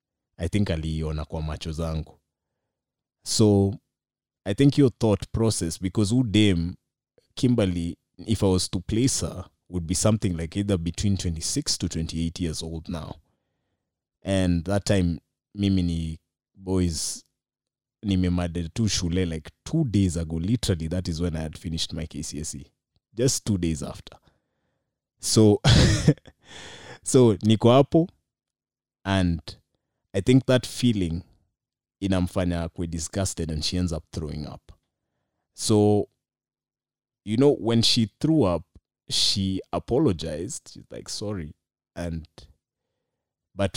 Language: Swahili